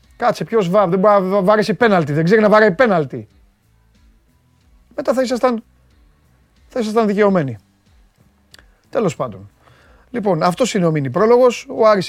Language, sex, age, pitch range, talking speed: Greek, male, 30-49, 125-185 Hz, 125 wpm